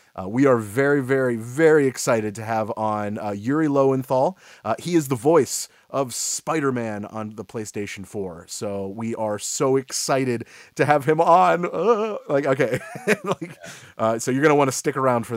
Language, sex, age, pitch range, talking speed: English, male, 30-49, 110-145 Hz, 180 wpm